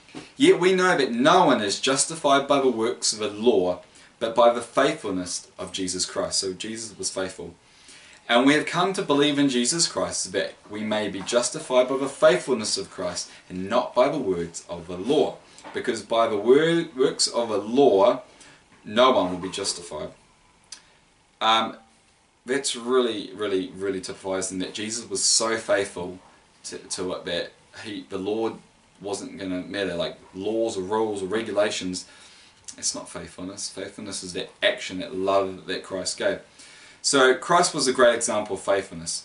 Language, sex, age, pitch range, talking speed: English, male, 20-39, 95-125 Hz, 170 wpm